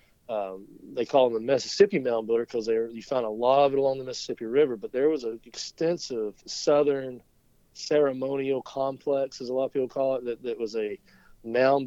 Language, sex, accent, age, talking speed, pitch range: English, male, American, 40-59, 195 wpm, 110-135 Hz